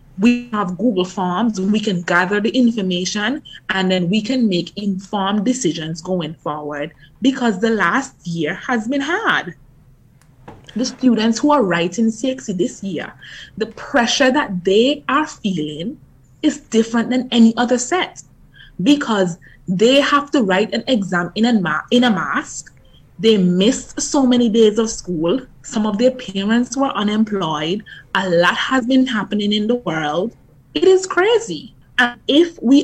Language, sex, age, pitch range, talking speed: English, female, 20-39, 185-255 Hz, 155 wpm